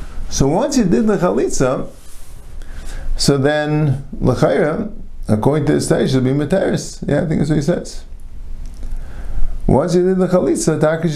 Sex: male